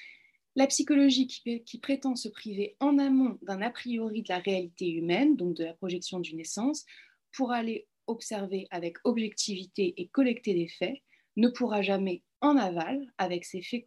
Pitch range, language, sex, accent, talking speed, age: 185-250 Hz, French, female, French, 165 wpm, 30-49